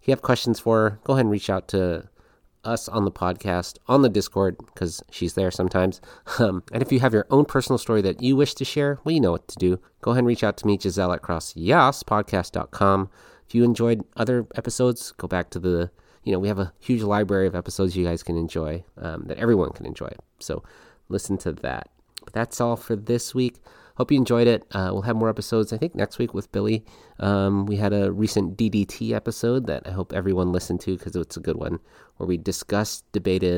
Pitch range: 90-115 Hz